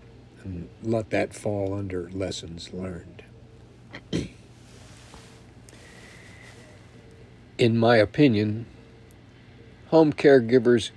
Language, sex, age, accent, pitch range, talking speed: English, male, 60-79, American, 100-120 Hz, 65 wpm